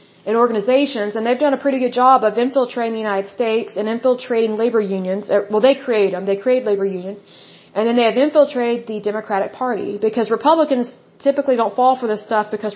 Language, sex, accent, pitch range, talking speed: Bengali, female, American, 215-255 Hz, 200 wpm